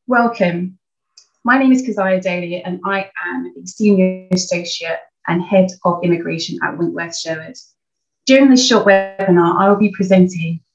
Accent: British